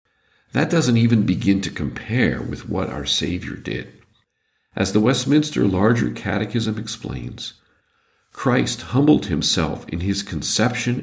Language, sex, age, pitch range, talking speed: English, male, 50-69, 90-115 Hz, 125 wpm